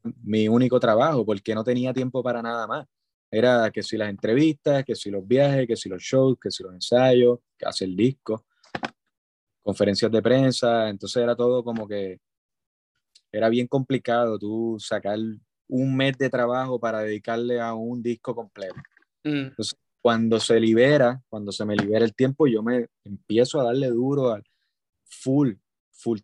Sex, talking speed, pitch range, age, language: male, 165 wpm, 110-140 Hz, 20-39, English